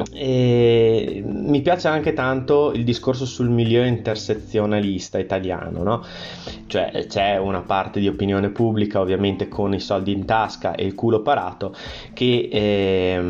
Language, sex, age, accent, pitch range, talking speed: Italian, male, 20-39, native, 95-115 Hz, 130 wpm